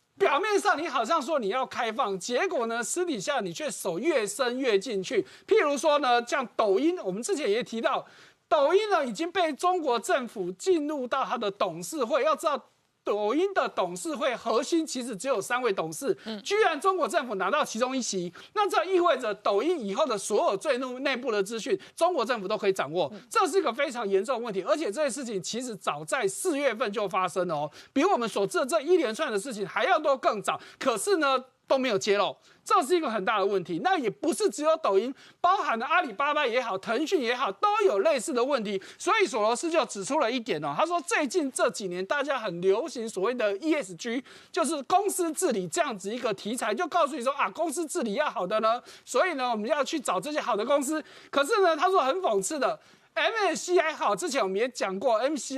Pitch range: 225-345 Hz